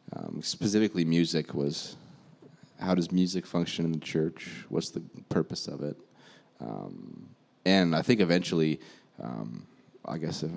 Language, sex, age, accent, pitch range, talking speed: English, male, 30-49, American, 80-95 Hz, 140 wpm